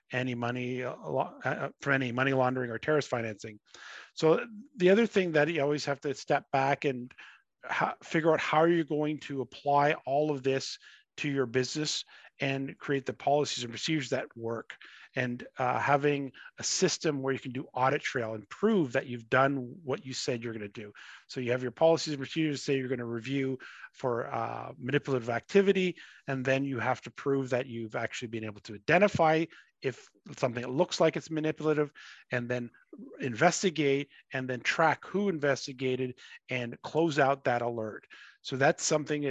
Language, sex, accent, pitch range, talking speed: English, male, American, 125-155 Hz, 180 wpm